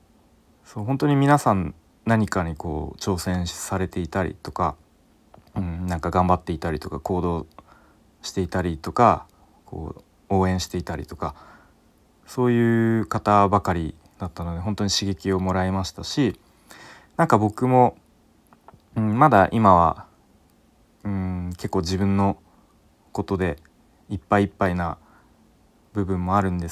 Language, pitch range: Japanese, 85-100 Hz